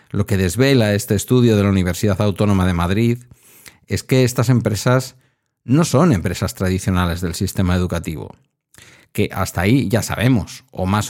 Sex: male